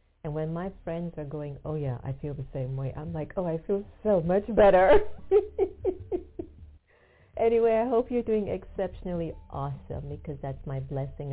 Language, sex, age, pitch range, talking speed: English, female, 50-69, 130-160 Hz, 170 wpm